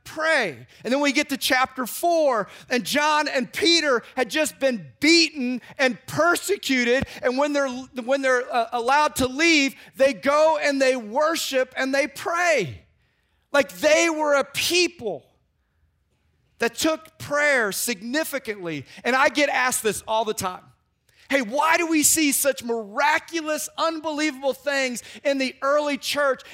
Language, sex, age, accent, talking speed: English, male, 40-59, American, 145 wpm